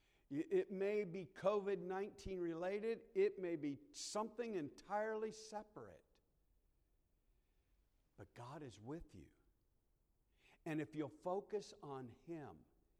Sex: male